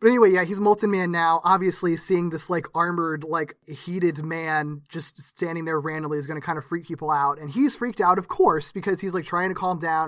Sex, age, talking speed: male, 20-39, 240 wpm